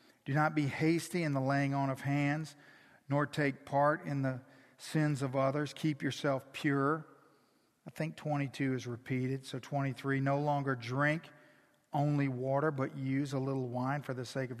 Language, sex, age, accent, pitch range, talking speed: English, male, 50-69, American, 135-155 Hz, 175 wpm